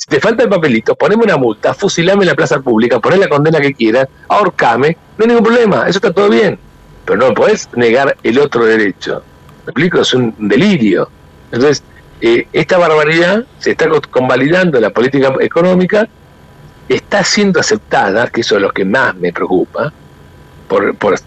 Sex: male